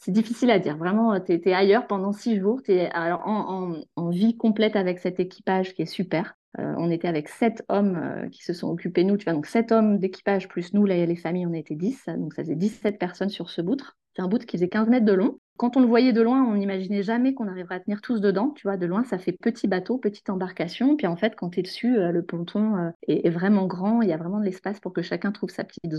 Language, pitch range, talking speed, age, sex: French, 180-220 Hz, 275 wpm, 30-49, female